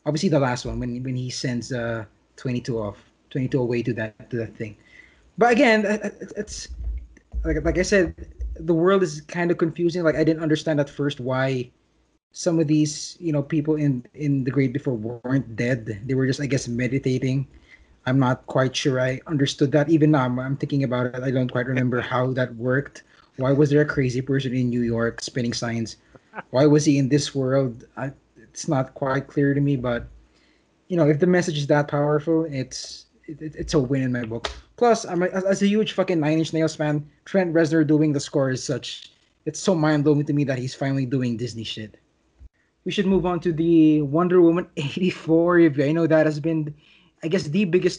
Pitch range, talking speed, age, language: 125-160 Hz, 210 wpm, 20-39, English